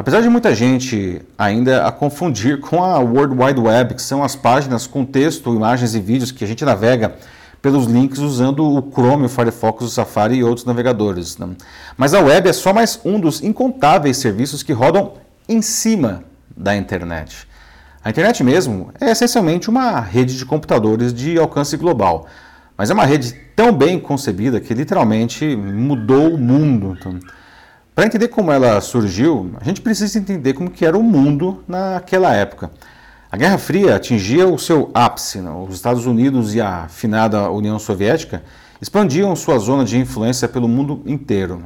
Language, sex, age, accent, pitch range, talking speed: Portuguese, male, 40-59, Brazilian, 110-150 Hz, 165 wpm